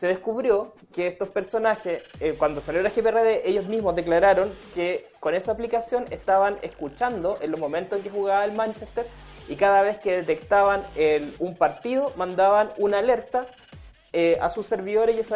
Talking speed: 175 wpm